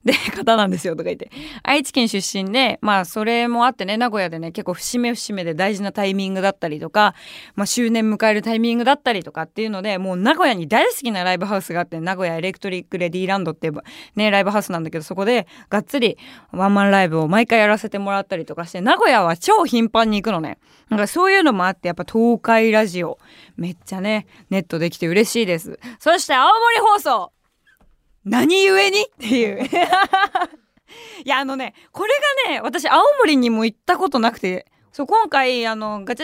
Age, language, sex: 20-39, Japanese, female